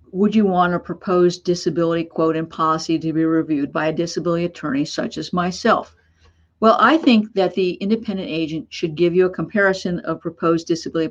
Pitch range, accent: 160-200 Hz, American